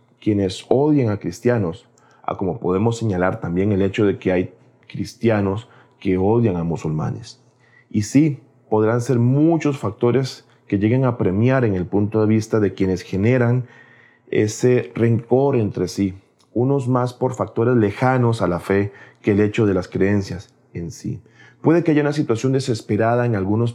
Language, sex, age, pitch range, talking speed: Spanish, male, 40-59, 95-125 Hz, 165 wpm